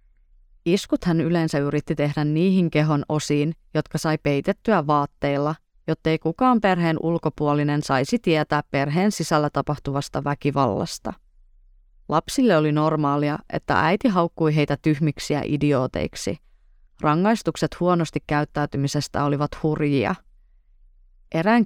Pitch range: 145-165 Hz